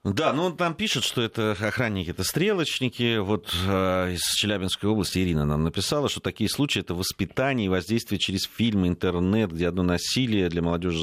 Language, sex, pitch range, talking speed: Russian, male, 85-115 Hz, 175 wpm